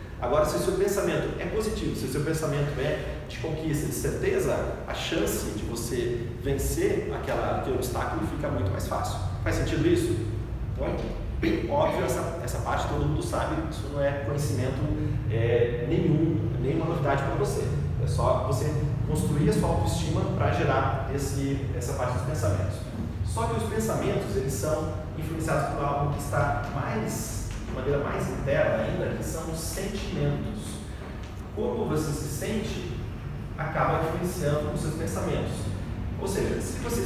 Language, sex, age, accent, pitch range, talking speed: Portuguese, male, 30-49, Brazilian, 105-145 Hz, 150 wpm